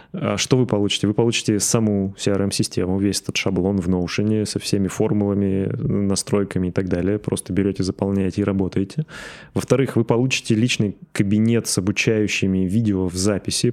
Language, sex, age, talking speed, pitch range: Russian, male, 20-39, 150 wpm, 95-115 Hz